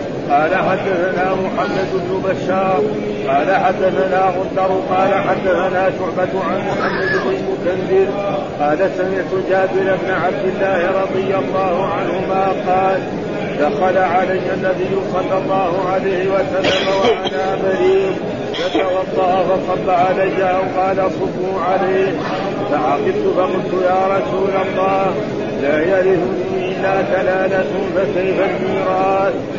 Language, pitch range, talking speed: Arabic, 185-190 Hz, 110 wpm